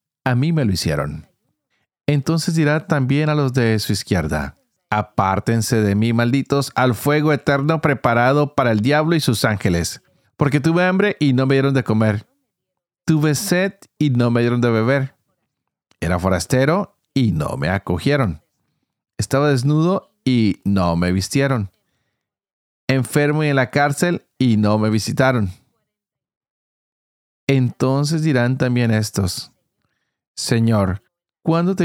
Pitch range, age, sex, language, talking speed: 100-145 Hz, 40-59, male, Spanish, 135 wpm